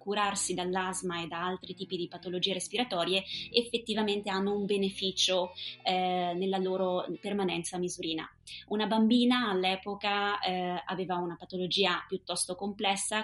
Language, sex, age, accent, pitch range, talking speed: Italian, female, 20-39, native, 180-200 Hz, 120 wpm